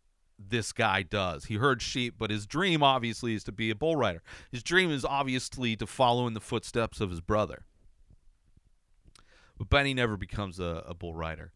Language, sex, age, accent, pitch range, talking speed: English, male, 40-59, American, 90-125 Hz, 185 wpm